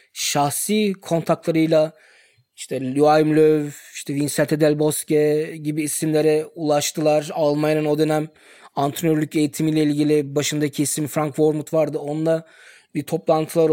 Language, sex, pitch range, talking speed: Turkish, male, 155-185 Hz, 120 wpm